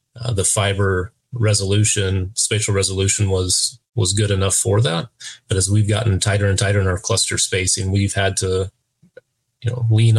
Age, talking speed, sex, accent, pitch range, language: 30-49, 170 wpm, male, American, 100-115 Hz, English